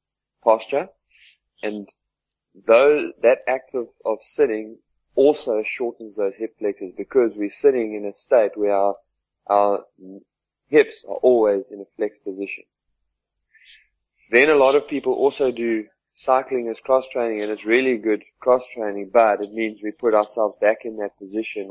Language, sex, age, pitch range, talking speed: English, male, 20-39, 100-130 Hz, 155 wpm